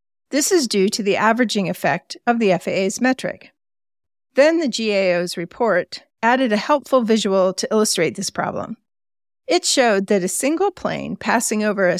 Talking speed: 160 wpm